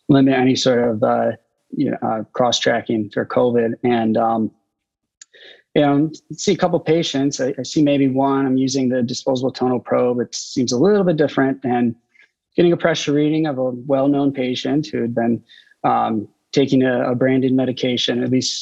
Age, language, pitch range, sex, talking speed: 20-39, English, 120-140 Hz, male, 185 wpm